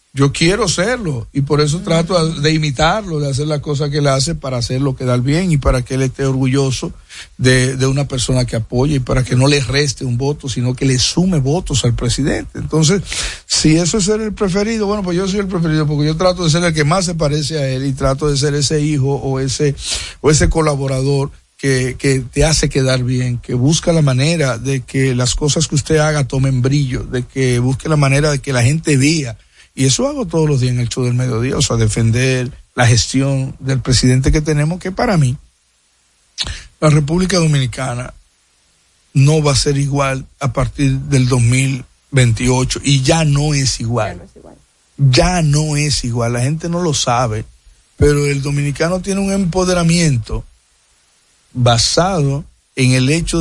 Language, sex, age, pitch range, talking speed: Spanish, male, 50-69, 125-155 Hz, 195 wpm